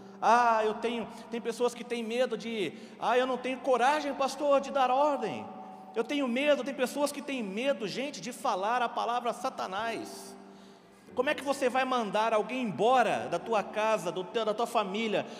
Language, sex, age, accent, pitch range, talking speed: Portuguese, male, 40-59, Brazilian, 220-270 Hz, 185 wpm